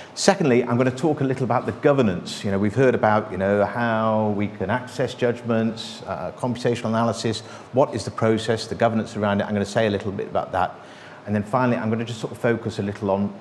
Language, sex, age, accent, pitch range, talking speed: English, male, 50-69, British, 100-120 Hz, 235 wpm